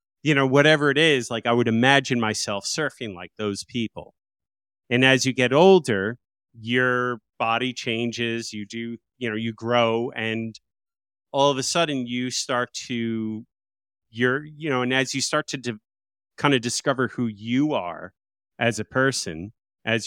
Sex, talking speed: male, 165 wpm